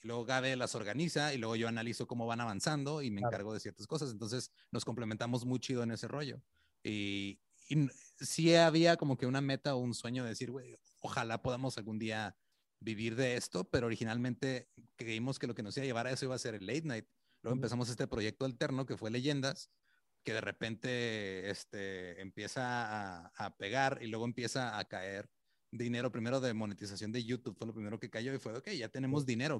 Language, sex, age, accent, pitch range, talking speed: Spanish, male, 30-49, Mexican, 110-135 Hz, 205 wpm